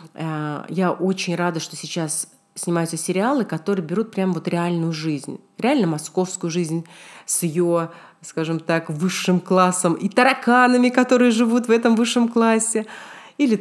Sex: female